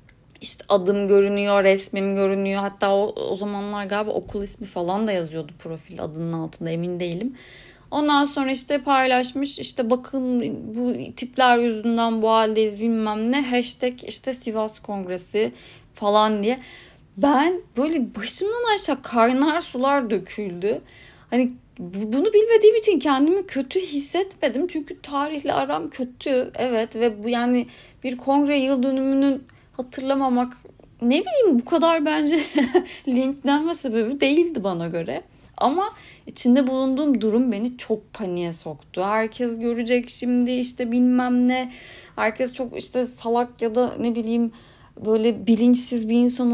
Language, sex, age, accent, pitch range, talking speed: Turkish, female, 30-49, native, 215-275 Hz, 135 wpm